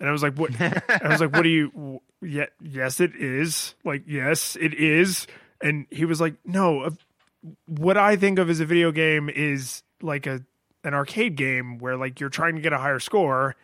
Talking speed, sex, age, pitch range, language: 205 wpm, male, 30-49, 140-175 Hz, English